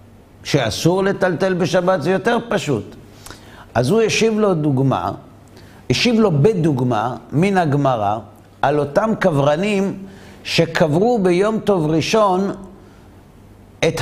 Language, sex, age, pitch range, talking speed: Hebrew, male, 60-79, 130-200 Hz, 105 wpm